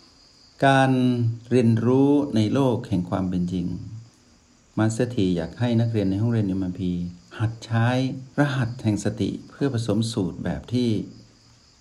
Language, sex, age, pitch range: Thai, male, 60-79, 95-120 Hz